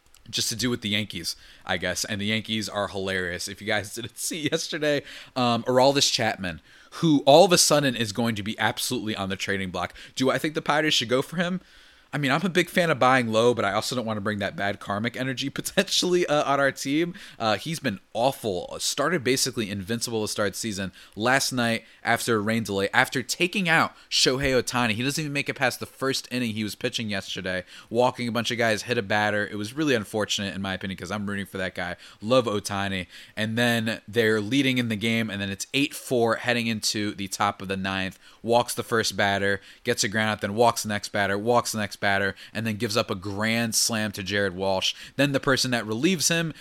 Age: 20-39